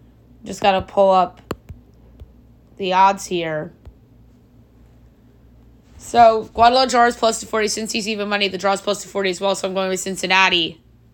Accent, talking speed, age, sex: American, 135 wpm, 20-39, female